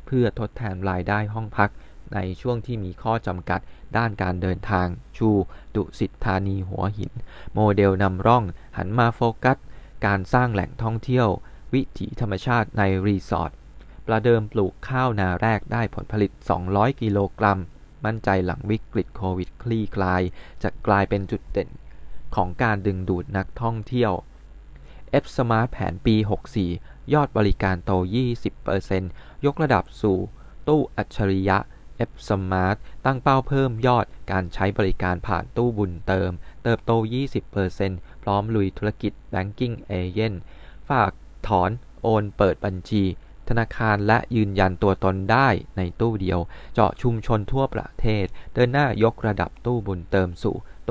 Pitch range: 95-115 Hz